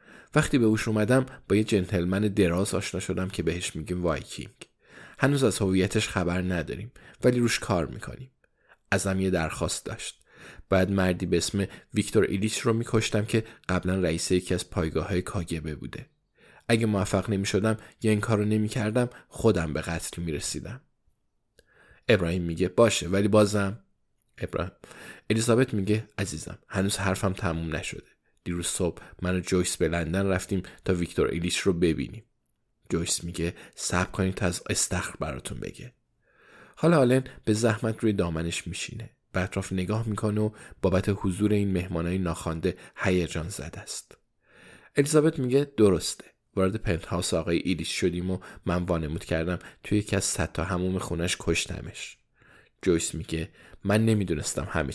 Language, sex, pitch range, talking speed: Persian, male, 90-110 Hz, 145 wpm